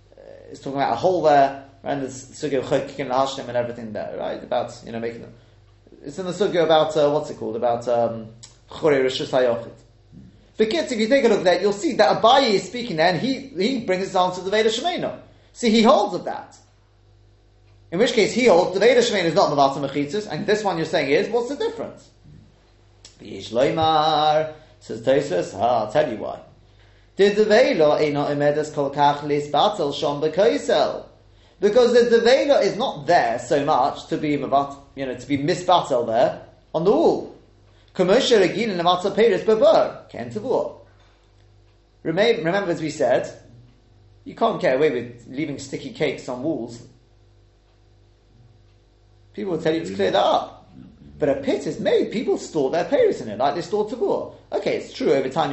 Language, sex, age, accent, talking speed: English, male, 30-49, British, 160 wpm